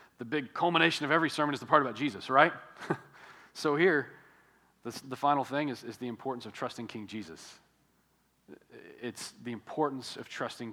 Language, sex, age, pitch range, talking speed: English, male, 40-59, 115-145 Hz, 170 wpm